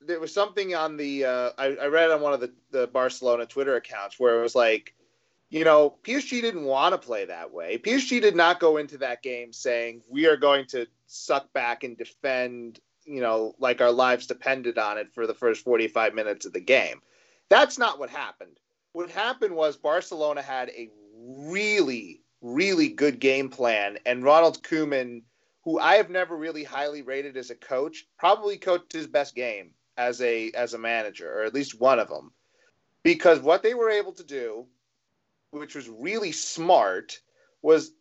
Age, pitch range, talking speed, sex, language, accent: 30-49, 130-205 Hz, 185 wpm, male, English, American